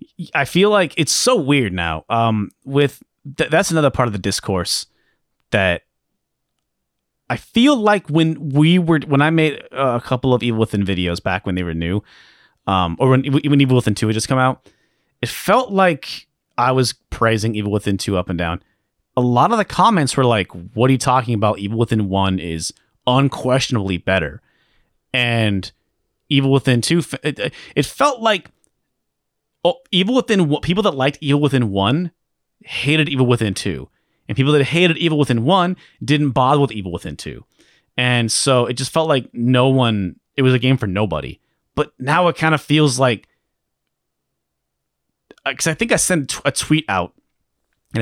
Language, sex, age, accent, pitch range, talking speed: English, male, 30-49, American, 110-150 Hz, 175 wpm